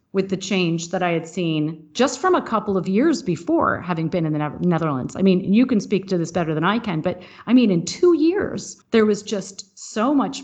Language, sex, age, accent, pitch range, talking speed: English, female, 40-59, American, 175-210 Hz, 235 wpm